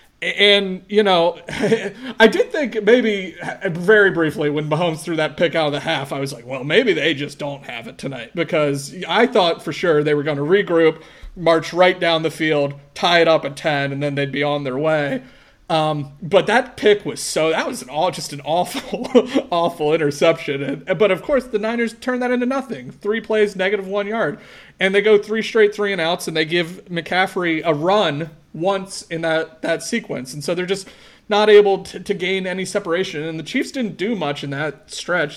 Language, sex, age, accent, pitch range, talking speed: English, male, 30-49, American, 145-190 Hz, 205 wpm